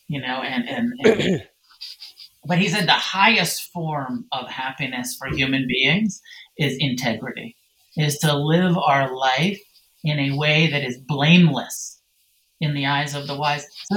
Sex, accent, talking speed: male, American, 155 wpm